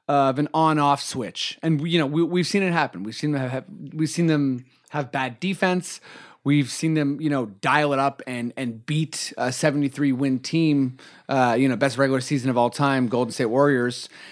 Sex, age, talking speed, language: male, 30-49, 210 wpm, English